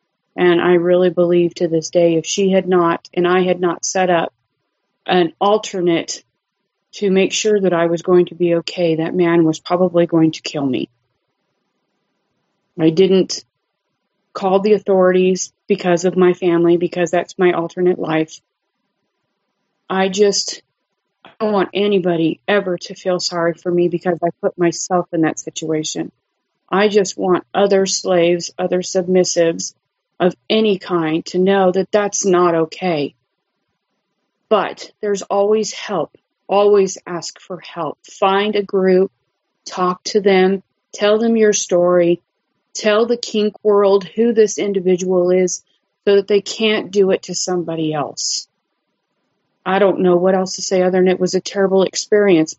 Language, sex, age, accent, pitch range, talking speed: English, female, 30-49, American, 175-195 Hz, 155 wpm